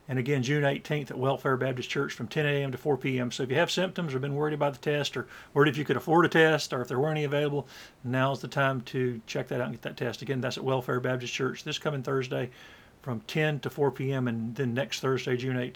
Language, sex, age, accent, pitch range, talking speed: English, male, 50-69, American, 125-155 Hz, 265 wpm